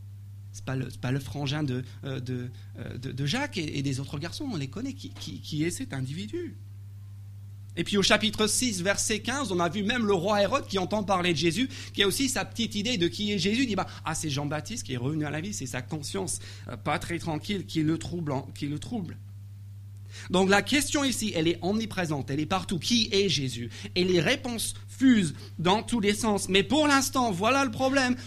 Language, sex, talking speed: French, male, 225 wpm